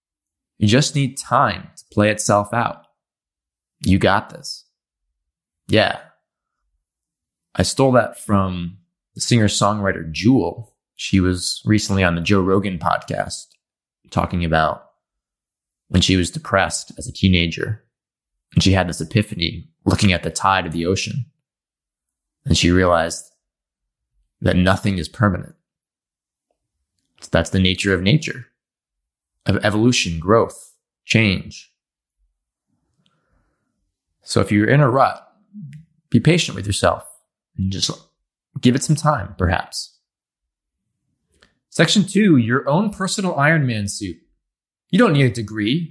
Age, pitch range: 20-39, 90-140 Hz